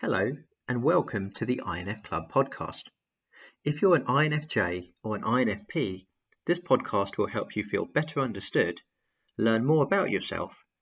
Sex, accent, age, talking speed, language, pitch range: male, British, 40-59, 150 wpm, English, 95-135 Hz